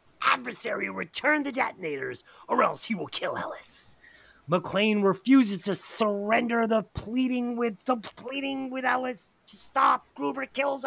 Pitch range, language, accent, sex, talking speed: 185-260 Hz, English, American, male, 140 wpm